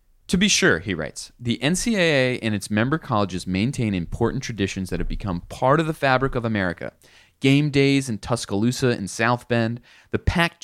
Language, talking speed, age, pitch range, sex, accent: English, 180 wpm, 30-49, 105-140 Hz, male, American